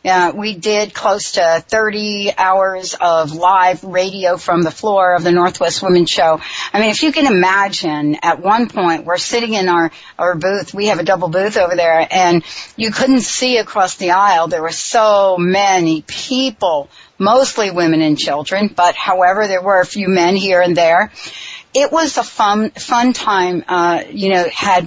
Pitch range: 170-210 Hz